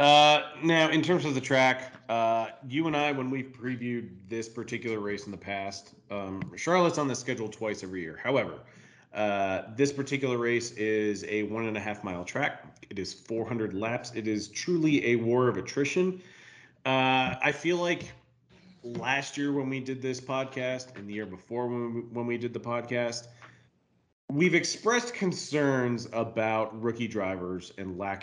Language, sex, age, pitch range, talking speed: English, male, 30-49, 105-140 Hz, 170 wpm